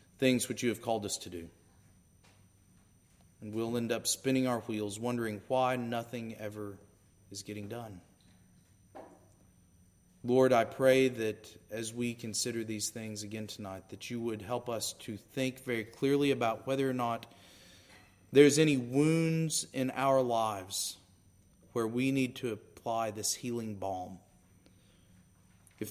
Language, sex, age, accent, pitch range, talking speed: English, male, 40-59, American, 95-120 Hz, 140 wpm